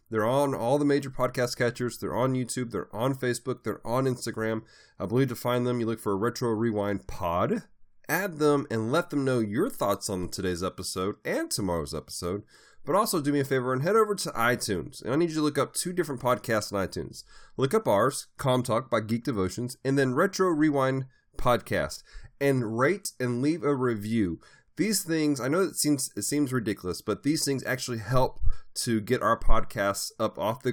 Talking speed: 205 wpm